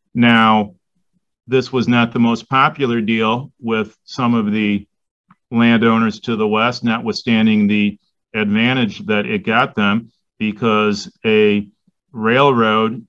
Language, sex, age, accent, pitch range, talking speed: English, male, 40-59, American, 110-125 Hz, 120 wpm